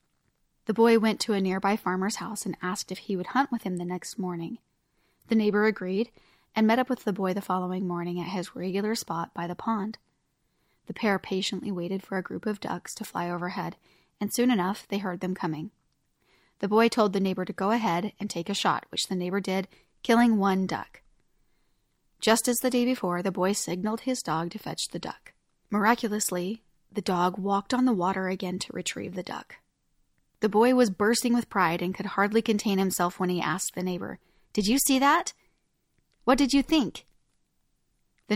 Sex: female